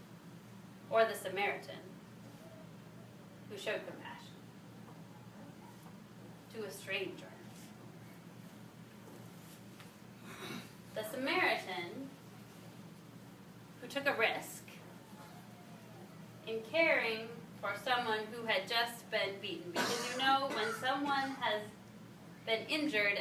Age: 20-39